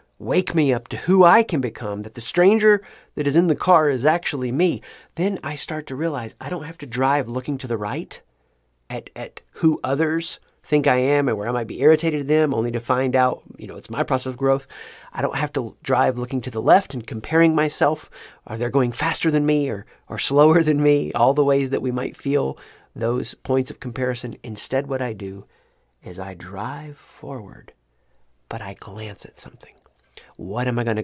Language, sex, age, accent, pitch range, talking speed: English, male, 40-59, American, 115-150 Hz, 215 wpm